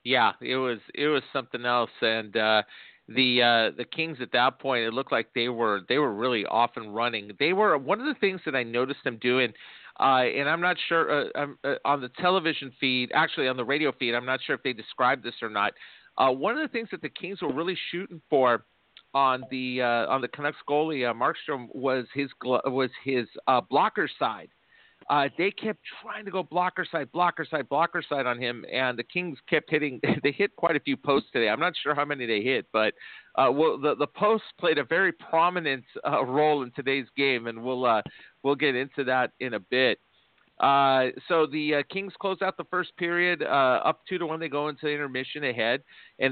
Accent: American